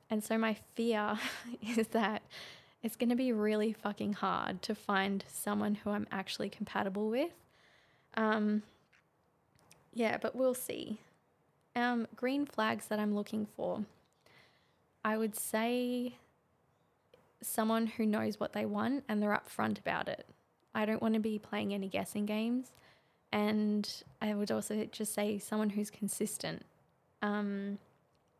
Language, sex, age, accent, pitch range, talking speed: English, female, 20-39, Australian, 200-225 Hz, 140 wpm